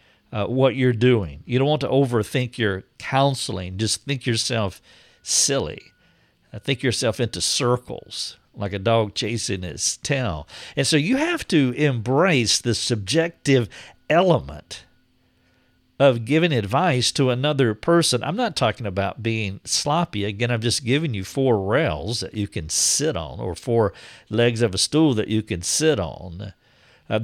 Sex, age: male, 50-69